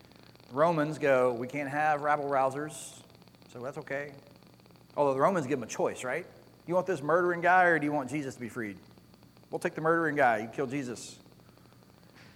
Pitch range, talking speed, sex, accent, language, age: 120-170 Hz, 185 wpm, male, American, English, 40-59